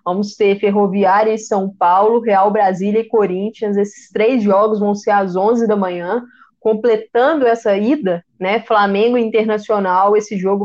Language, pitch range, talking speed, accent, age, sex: Portuguese, 195-240 Hz, 150 wpm, Brazilian, 20-39, female